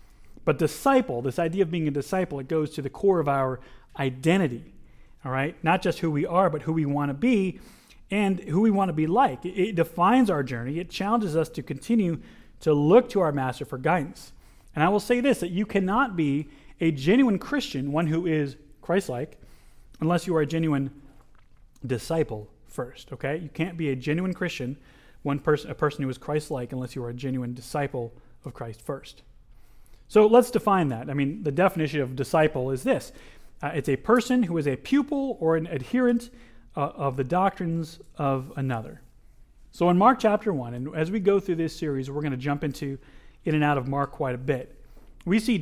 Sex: male